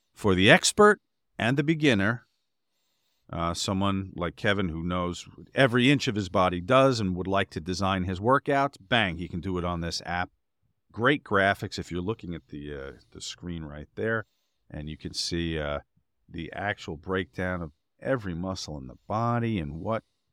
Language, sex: English, male